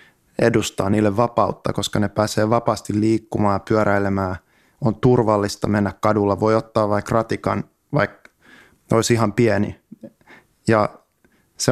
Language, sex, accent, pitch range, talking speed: Finnish, male, native, 100-115 Hz, 120 wpm